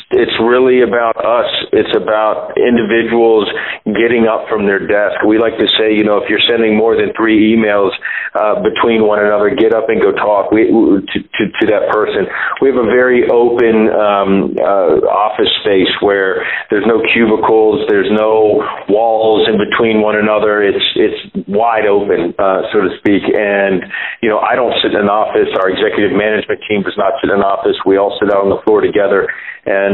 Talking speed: 190 wpm